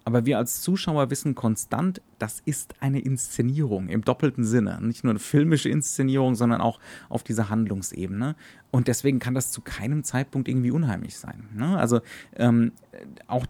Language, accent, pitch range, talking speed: German, German, 105-135 Hz, 160 wpm